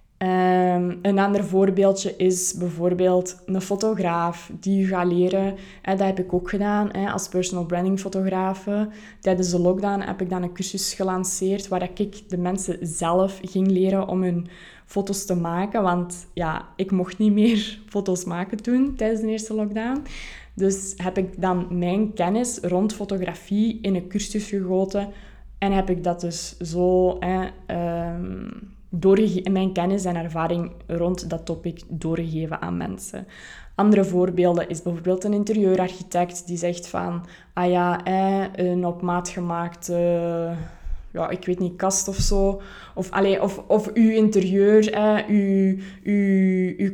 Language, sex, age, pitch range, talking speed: Dutch, female, 20-39, 175-195 Hz, 150 wpm